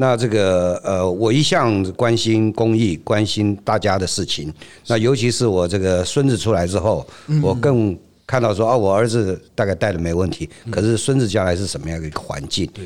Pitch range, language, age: 90-130 Hz, Chinese, 50-69